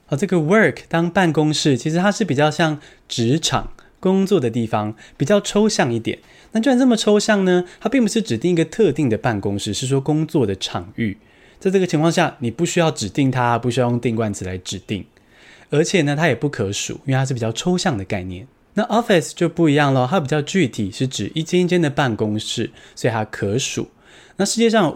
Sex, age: male, 20-39